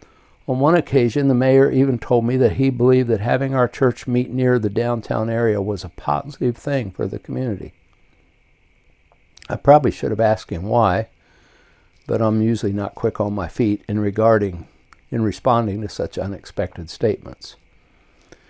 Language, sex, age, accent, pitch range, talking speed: English, male, 60-79, American, 100-125 Hz, 160 wpm